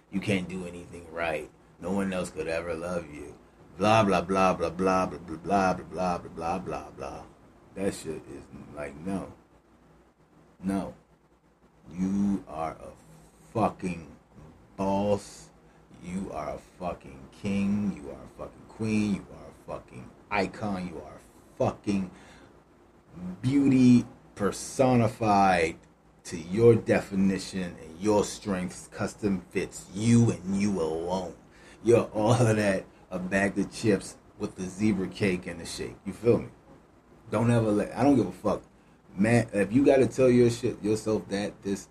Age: 30-49